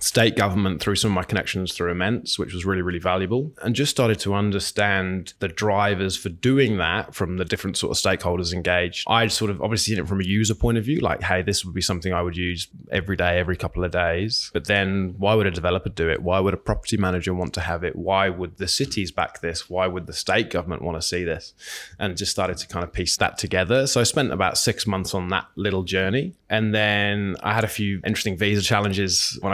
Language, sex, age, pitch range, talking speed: English, male, 20-39, 90-110 Hz, 240 wpm